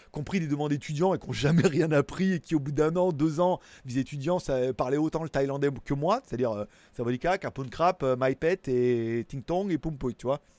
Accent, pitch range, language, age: French, 130-175 Hz, French, 30-49